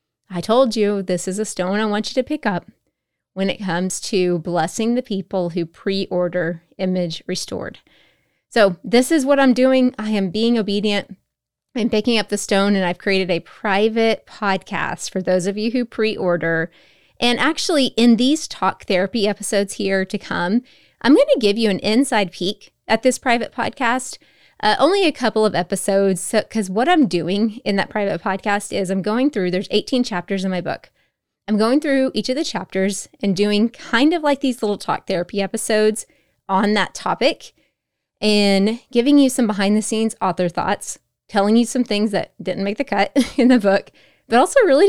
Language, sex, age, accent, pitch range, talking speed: English, female, 20-39, American, 190-235 Hz, 190 wpm